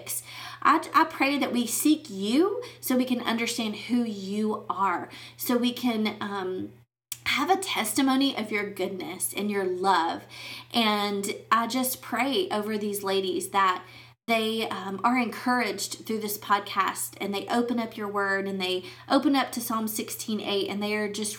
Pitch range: 195-235 Hz